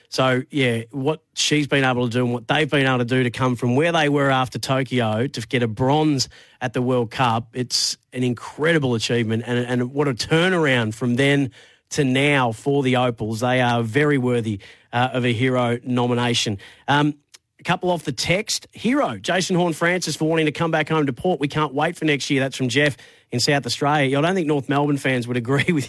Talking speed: 220 wpm